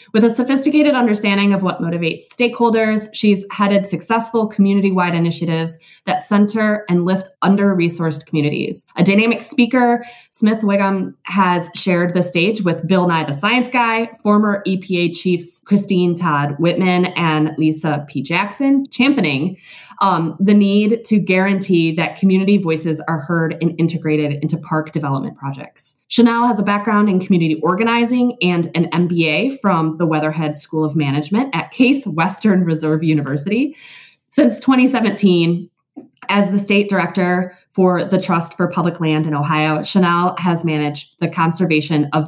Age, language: 20-39, English